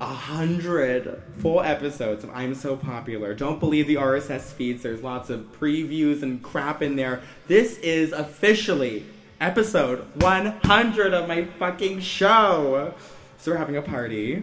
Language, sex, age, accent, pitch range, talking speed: English, male, 20-39, American, 110-145 Hz, 145 wpm